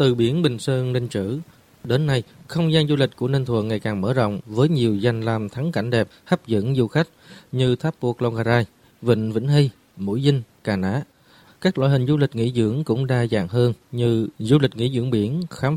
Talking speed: 230 wpm